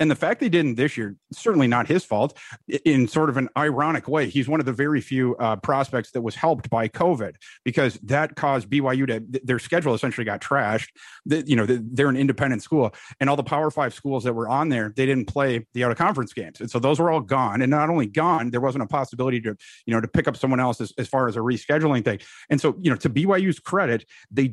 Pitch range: 125-155 Hz